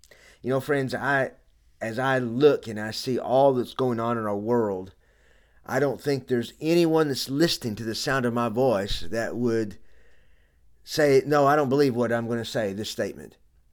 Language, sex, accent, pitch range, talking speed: English, male, American, 105-145 Hz, 190 wpm